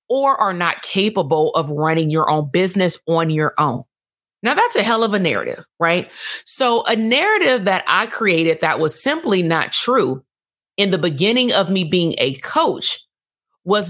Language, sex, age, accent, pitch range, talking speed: English, female, 30-49, American, 165-210 Hz, 175 wpm